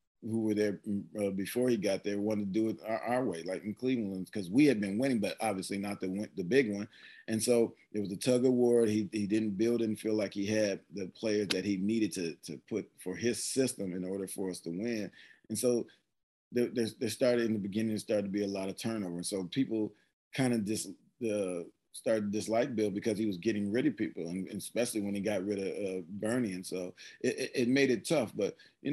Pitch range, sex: 100-115 Hz, male